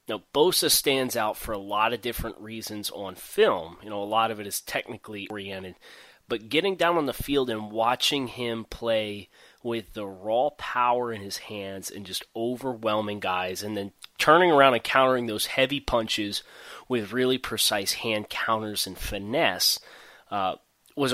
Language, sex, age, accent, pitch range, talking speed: English, male, 20-39, American, 105-125 Hz, 170 wpm